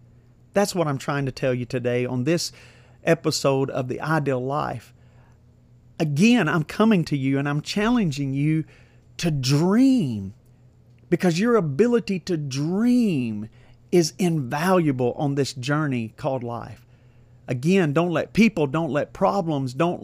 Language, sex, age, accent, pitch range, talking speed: English, male, 40-59, American, 125-175 Hz, 140 wpm